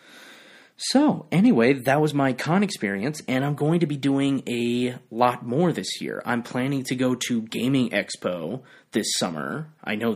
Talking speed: 170 wpm